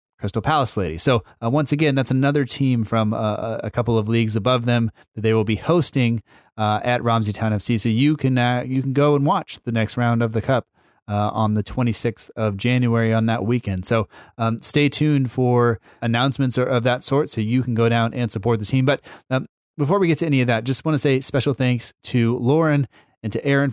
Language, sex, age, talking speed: English, male, 30-49, 230 wpm